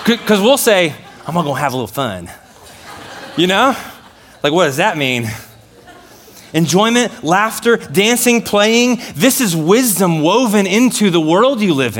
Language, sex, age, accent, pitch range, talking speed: English, male, 20-39, American, 115-155 Hz, 150 wpm